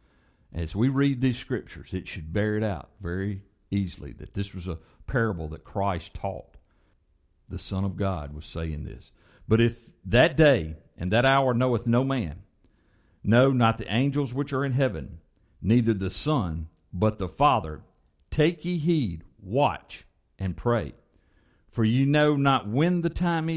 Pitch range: 85-125 Hz